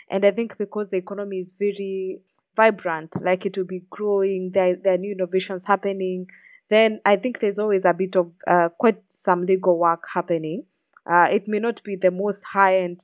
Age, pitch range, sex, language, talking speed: 20-39, 175-205 Hz, female, English, 190 wpm